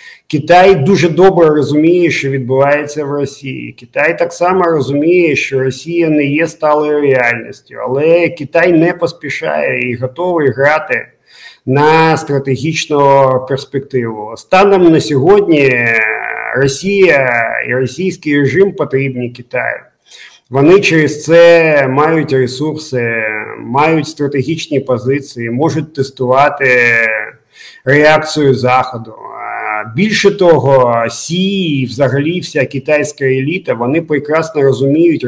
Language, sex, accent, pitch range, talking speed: Ukrainian, male, native, 130-165 Hz, 100 wpm